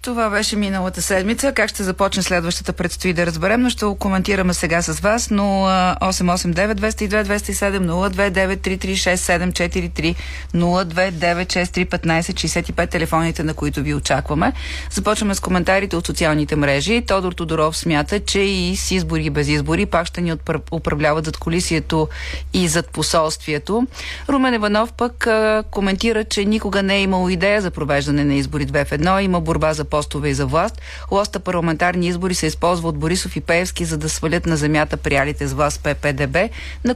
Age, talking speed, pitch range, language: 30-49, 155 wpm, 150-195 Hz, Bulgarian